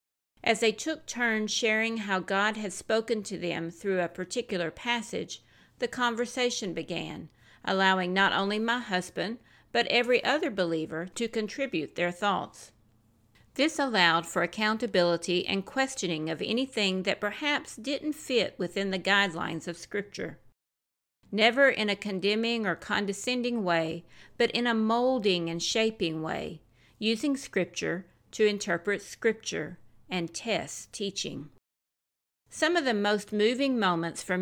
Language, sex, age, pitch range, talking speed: English, female, 50-69, 175-230 Hz, 135 wpm